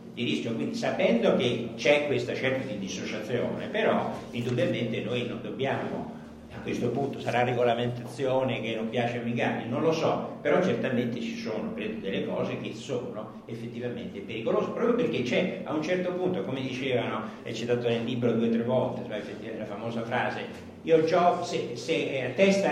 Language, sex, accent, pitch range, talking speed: Italian, male, native, 120-165 Hz, 175 wpm